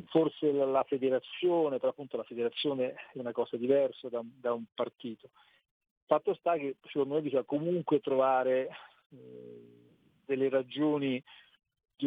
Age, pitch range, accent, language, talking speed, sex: 40-59, 125-145 Hz, native, Italian, 130 wpm, male